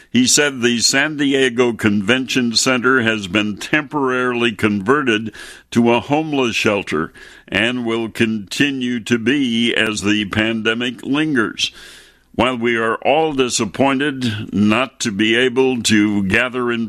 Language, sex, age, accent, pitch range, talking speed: English, male, 60-79, American, 110-130 Hz, 130 wpm